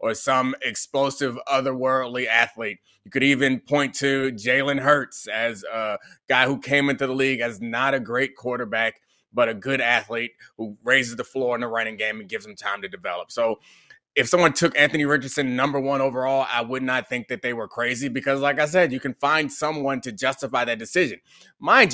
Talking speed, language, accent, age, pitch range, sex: 200 wpm, English, American, 20-39, 125-145 Hz, male